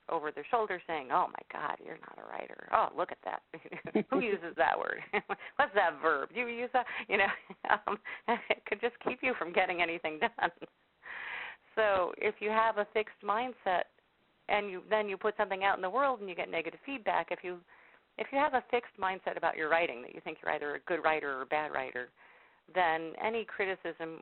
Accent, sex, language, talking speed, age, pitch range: American, female, English, 215 wpm, 40-59, 150-200 Hz